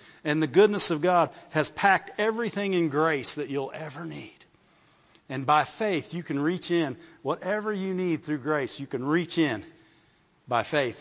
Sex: male